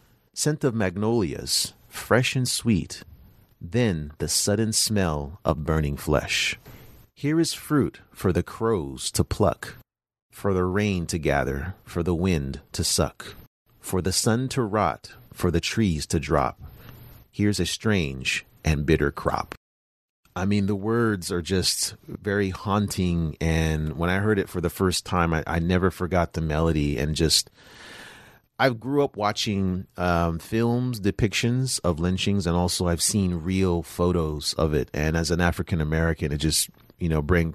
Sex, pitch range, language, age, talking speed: male, 80-100 Hz, English, 40-59, 155 wpm